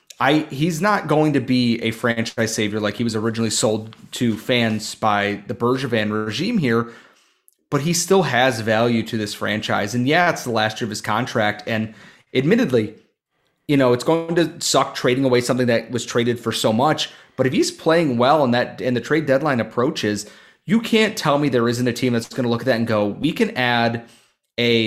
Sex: male